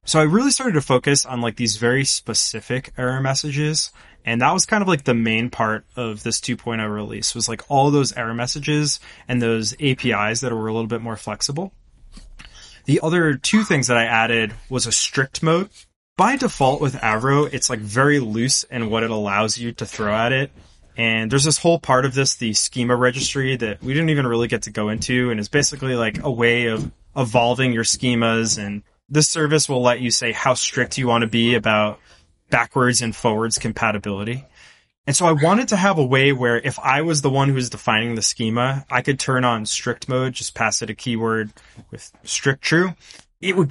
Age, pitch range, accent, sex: 20-39, 115-140 Hz, American, male